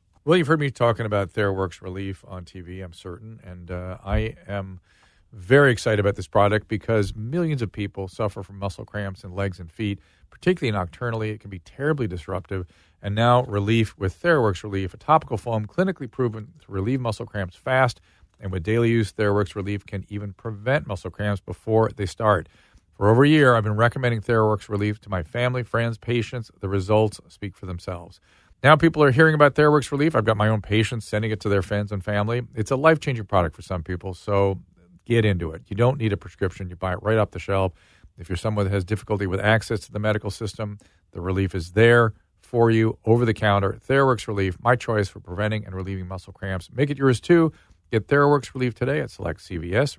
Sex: male